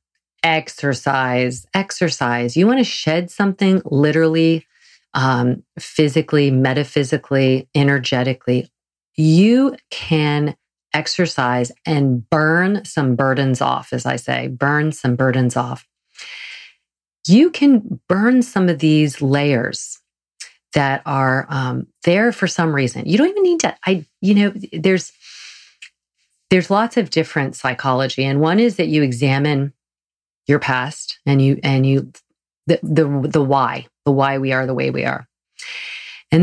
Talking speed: 130 wpm